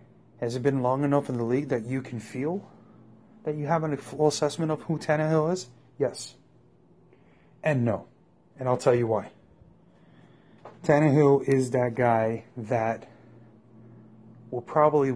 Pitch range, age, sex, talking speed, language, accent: 120-135 Hz, 30-49, male, 145 wpm, English, American